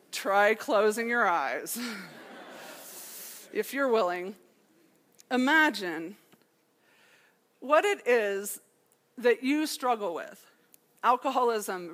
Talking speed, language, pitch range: 80 wpm, English, 215-295 Hz